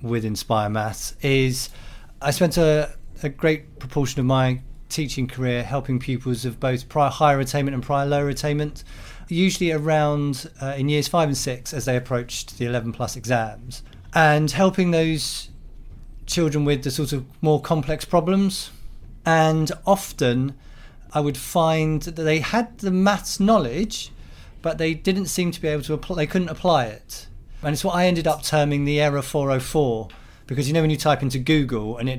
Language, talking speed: English, 175 wpm